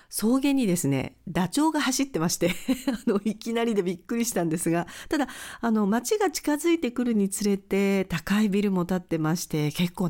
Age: 50-69